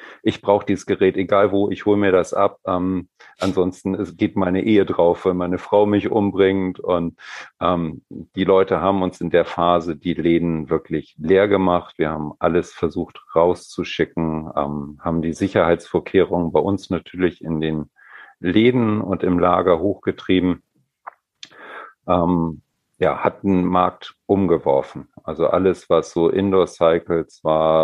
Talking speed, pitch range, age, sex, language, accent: 145 wpm, 80-95 Hz, 50-69, male, German, German